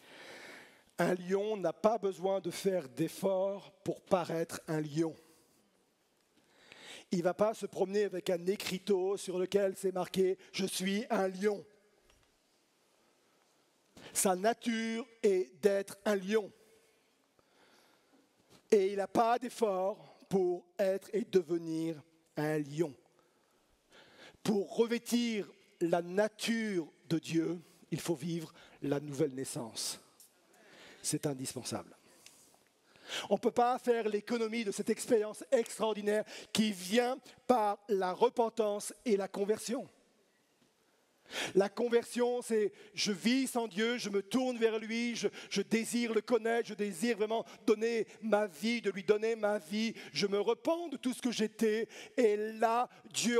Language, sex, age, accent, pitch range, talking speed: French, male, 50-69, French, 190-230 Hz, 135 wpm